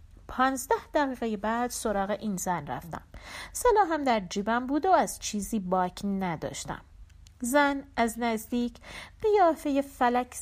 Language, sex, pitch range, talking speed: Persian, female, 215-290 Hz, 120 wpm